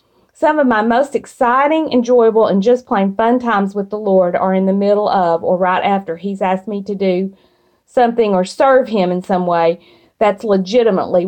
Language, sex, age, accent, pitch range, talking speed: English, female, 40-59, American, 195-250 Hz, 190 wpm